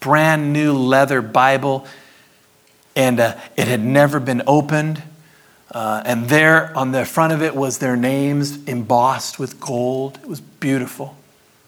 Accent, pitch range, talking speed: American, 140-185 Hz, 145 wpm